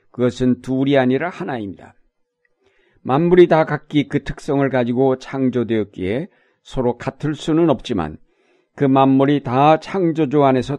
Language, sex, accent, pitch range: Korean, male, native, 125-155 Hz